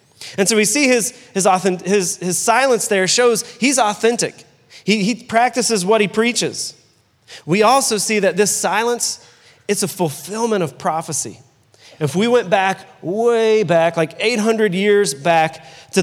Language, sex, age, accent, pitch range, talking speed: English, male, 30-49, American, 155-205 Hz, 155 wpm